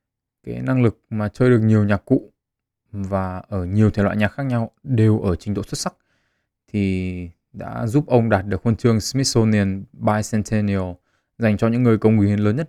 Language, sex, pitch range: Vietnamese, male, 100-125 Hz